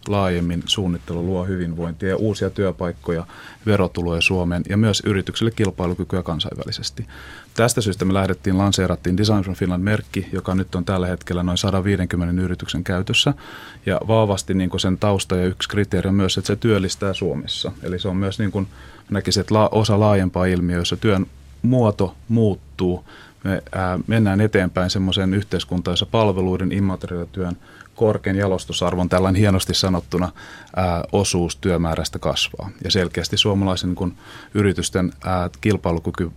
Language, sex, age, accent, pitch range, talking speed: Finnish, male, 30-49, native, 90-100 Hz, 130 wpm